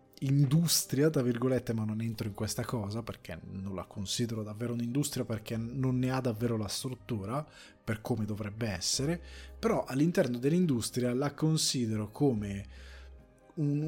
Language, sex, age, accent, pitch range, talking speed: Italian, male, 20-39, native, 110-130 Hz, 145 wpm